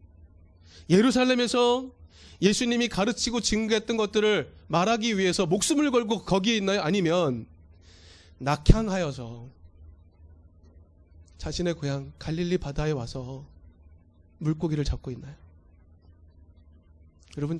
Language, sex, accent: Korean, male, native